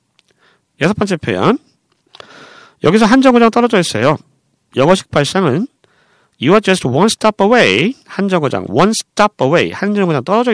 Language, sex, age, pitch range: Korean, male, 40-59, 130-215 Hz